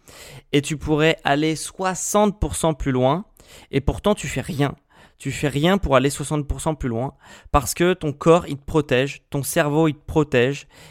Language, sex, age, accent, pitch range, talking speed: French, male, 20-39, French, 130-155 Hz, 175 wpm